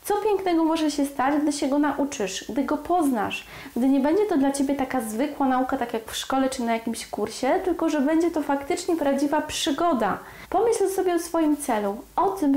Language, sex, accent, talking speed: Polish, female, native, 205 wpm